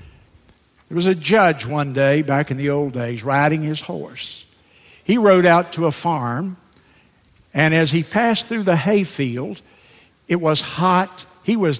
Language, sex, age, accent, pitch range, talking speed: English, male, 60-79, American, 135-185 Hz, 165 wpm